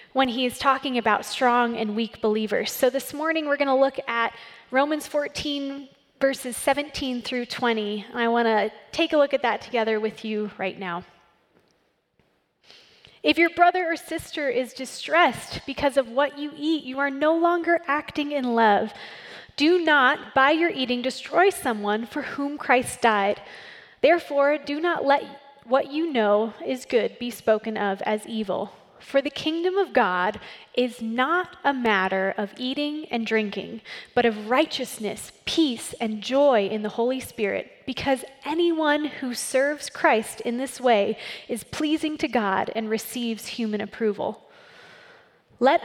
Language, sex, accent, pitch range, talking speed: English, female, American, 220-290 Hz, 155 wpm